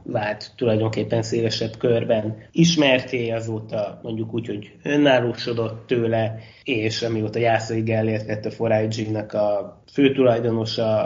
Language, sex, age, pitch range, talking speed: Hungarian, male, 20-39, 110-125 Hz, 115 wpm